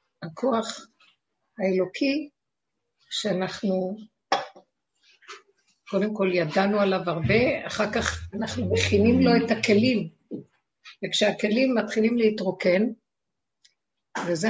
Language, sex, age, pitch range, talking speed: Hebrew, female, 60-79, 190-230 Hz, 80 wpm